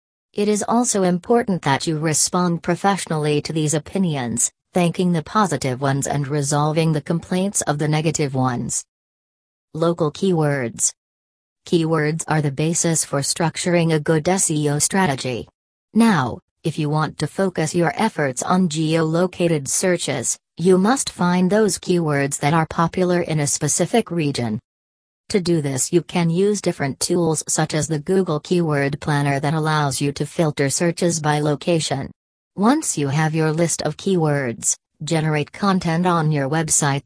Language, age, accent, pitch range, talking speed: English, 40-59, American, 145-180 Hz, 150 wpm